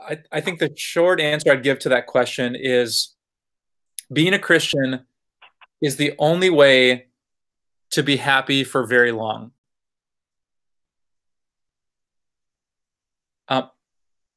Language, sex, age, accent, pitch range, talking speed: English, male, 20-39, American, 125-155 Hz, 105 wpm